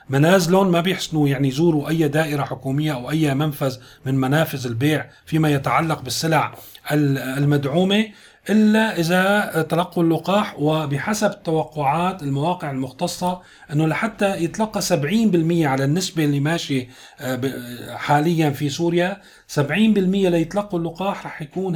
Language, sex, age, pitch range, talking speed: Arabic, male, 40-59, 140-180 Hz, 120 wpm